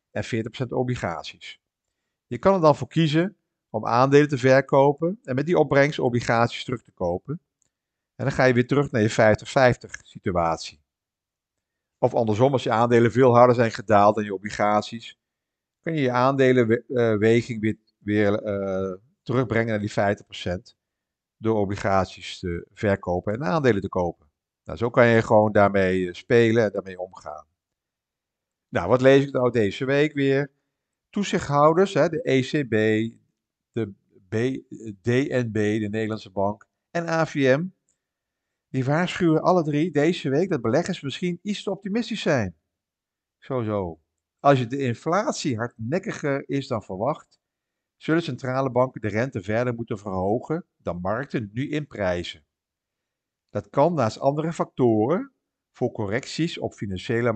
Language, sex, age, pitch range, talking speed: Dutch, male, 50-69, 105-140 Hz, 140 wpm